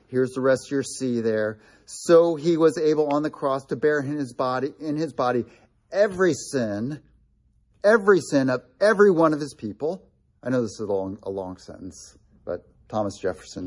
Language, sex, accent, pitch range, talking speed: English, male, American, 130-180 Hz, 195 wpm